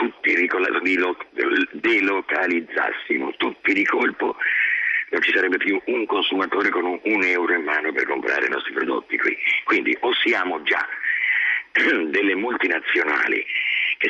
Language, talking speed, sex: Italian, 125 wpm, male